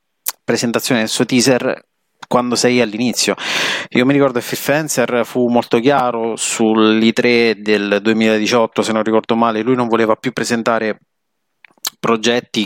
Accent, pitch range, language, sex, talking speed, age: native, 105-125 Hz, Italian, male, 135 wpm, 30-49